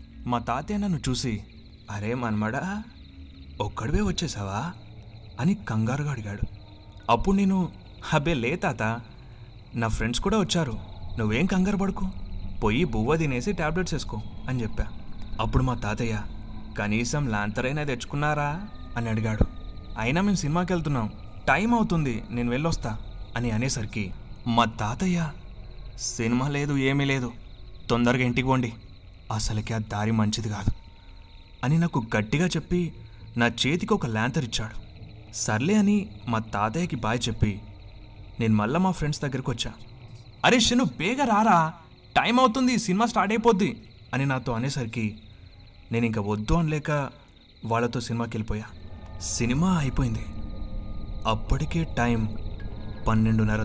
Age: 30-49